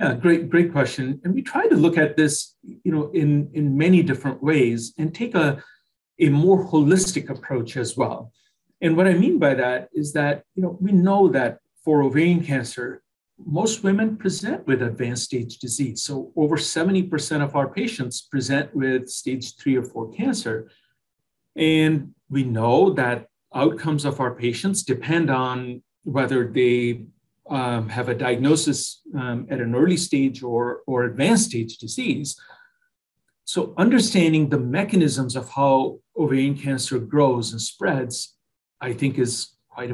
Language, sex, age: English, male, 40-59